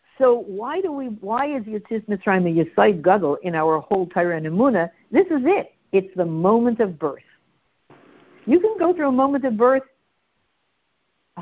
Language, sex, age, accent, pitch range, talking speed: English, female, 60-79, American, 195-290 Hz, 170 wpm